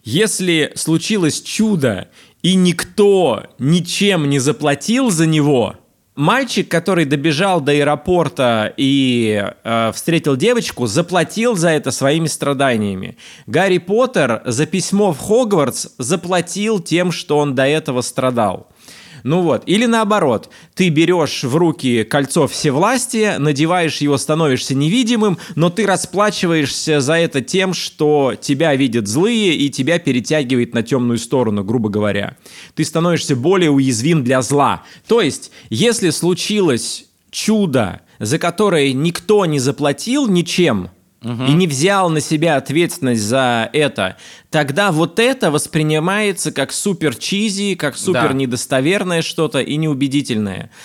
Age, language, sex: 20-39, Russian, male